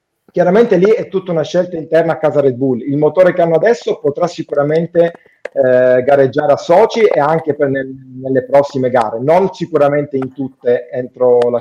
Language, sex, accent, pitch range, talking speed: Italian, male, native, 140-185 Hz, 180 wpm